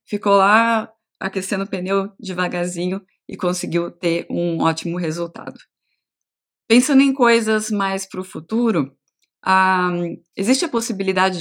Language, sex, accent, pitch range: Portuguese, female, Brazilian, 175-210 Hz